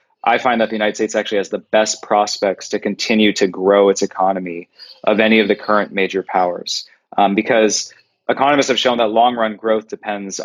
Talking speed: 190 wpm